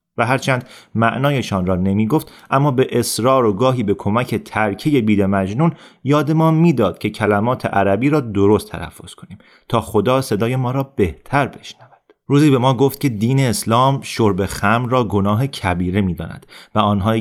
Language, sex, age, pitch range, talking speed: Persian, male, 30-49, 100-130 Hz, 165 wpm